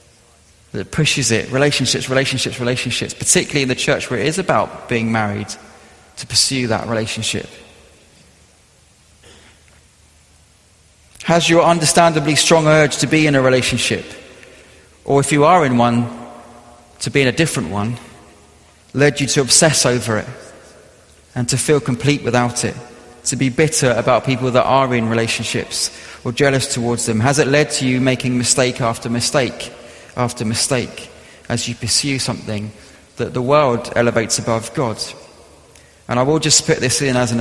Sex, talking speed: male, 155 wpm